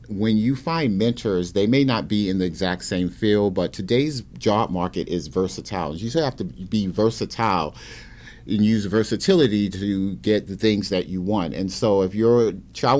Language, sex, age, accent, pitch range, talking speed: English, male, 40-59, American, 95-120 Hz, 185 wpm